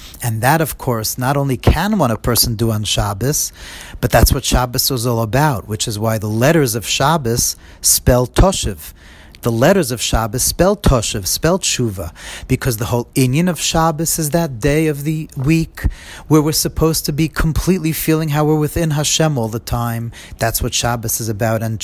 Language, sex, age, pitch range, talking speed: English, male, 40-59, 115-155 Hz, 190 wpm